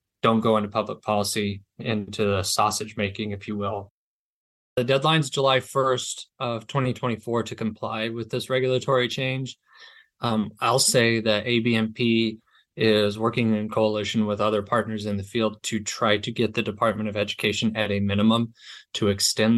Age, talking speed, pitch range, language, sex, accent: 20-39, 160 wpm, 105-125 Hz, English, male, American